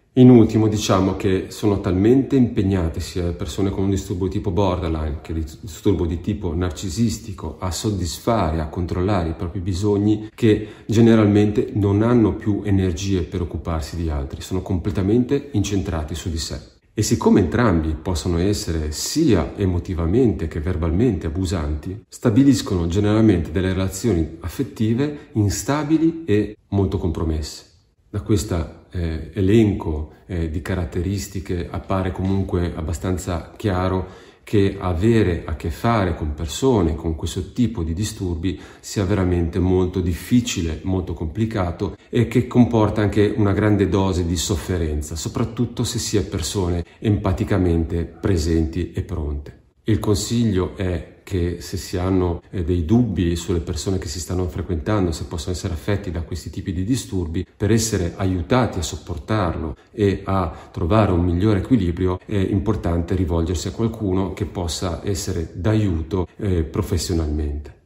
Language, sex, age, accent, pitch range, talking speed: Italian, male, 40-59, native, 85-105 Hz, 140 wpm